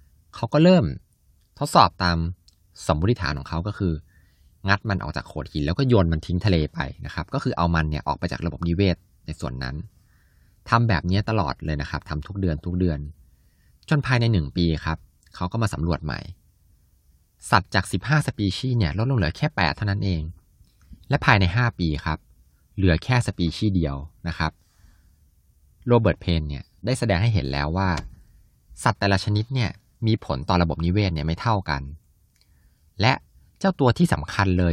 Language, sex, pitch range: Thai, male, 75-100 Hz